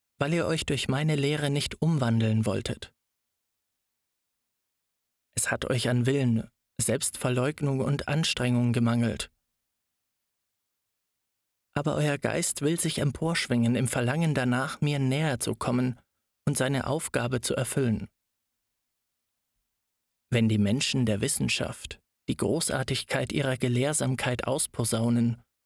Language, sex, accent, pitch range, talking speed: German, male, German, 115-145 Hz, 110 wpm